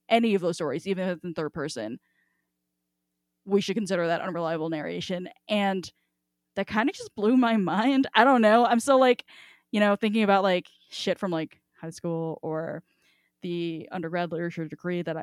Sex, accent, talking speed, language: female, American, 180 wpm, English